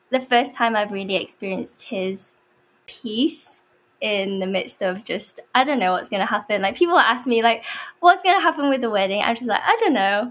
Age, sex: 10-29, female